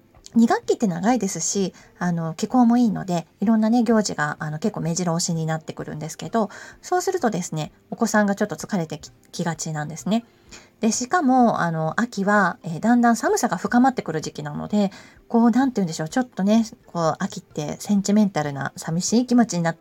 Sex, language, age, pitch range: female, Japanese, 20-39, 165-230 Hz